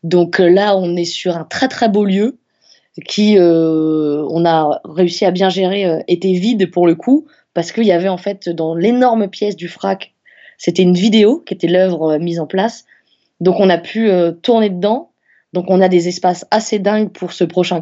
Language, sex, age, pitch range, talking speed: French, female, 20-39, 170-215 Hz, 200 wpm